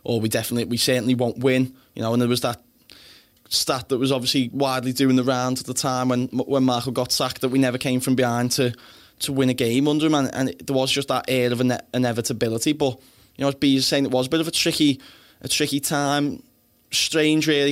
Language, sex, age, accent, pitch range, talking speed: English, male, 10-29, British, 125-140 Hz, 245 wpm